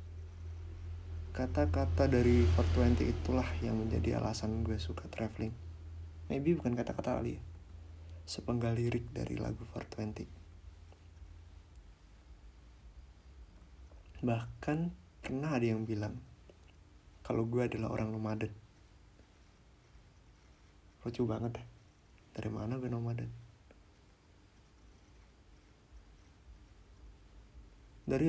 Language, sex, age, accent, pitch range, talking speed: Indonesian, male, 30-49, native, 80-115 Hz, 80 wpm